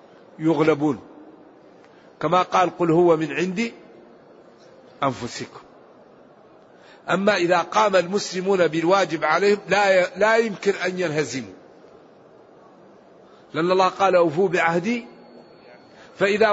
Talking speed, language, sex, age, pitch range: 90 wpm, Arabic, male, 50-69, 170-195 Hz